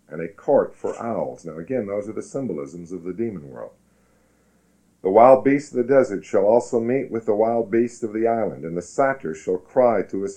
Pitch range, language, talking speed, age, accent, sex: 85-120 Hz, English, 220 wpm, 50-69, American, male